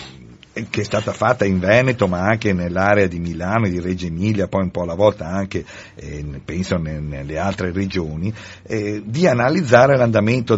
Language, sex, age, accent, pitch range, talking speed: Italian, male, 50-69, native, 90-110 Hz, 160 wpm